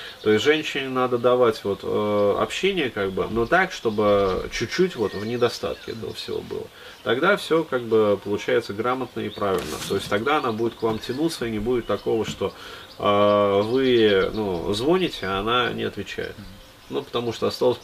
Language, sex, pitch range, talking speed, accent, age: Russian, male, 105-125 Hz, 180 wpm, native, 30-49